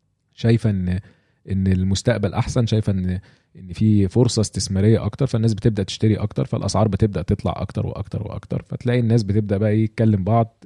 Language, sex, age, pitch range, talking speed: English, male, 20-39, 100-125 Hz, 160 wpm